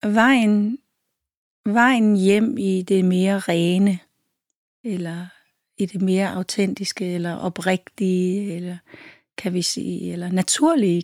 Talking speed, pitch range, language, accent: 110 wpm, 180-210 Hz, Danish, native